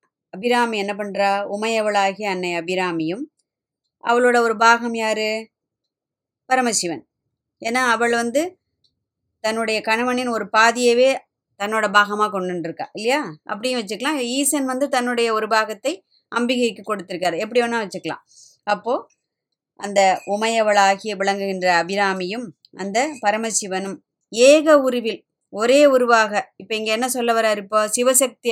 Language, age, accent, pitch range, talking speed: Tamil, 20-39, native, 200-240 Hz, 110 wpm